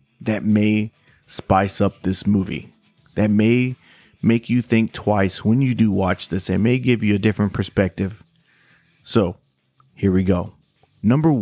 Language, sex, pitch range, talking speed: English, male, 100-120 Hz, 150 wpm